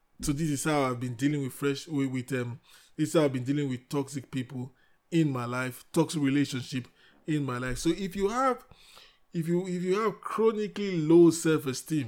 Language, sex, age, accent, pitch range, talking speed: English, male, 20-39, Nigerian, 130-160 Hz, 205 wpm